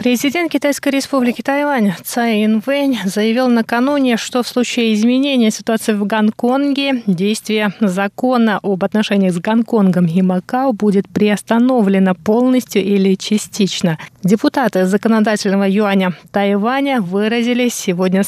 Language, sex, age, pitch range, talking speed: Russian, female, 20-39, 195-240 Hz, 110 wpm